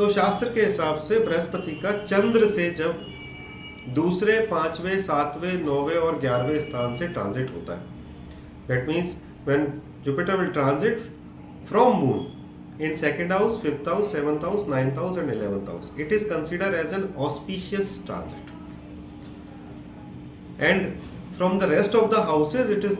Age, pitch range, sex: 40-59, 120-190 Hz, male